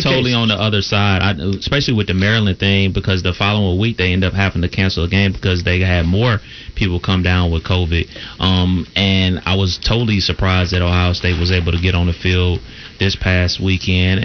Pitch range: 90-110 Hz